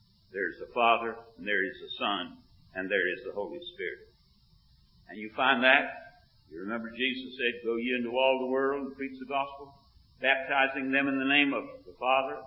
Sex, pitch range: male, 130-160 Hz